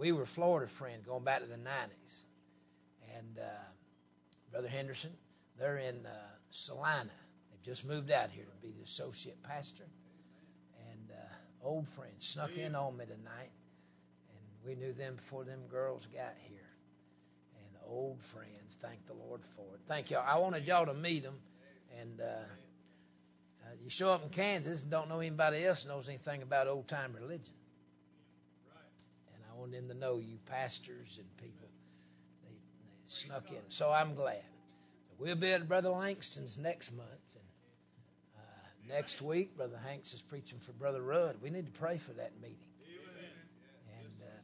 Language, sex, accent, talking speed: English, male, American, 165 wpm